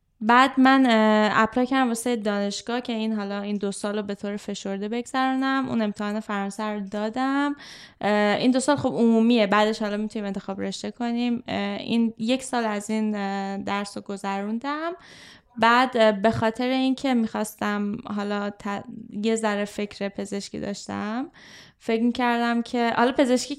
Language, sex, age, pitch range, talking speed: Persian, female, 10-29, 200-235 Hz, 140 wpm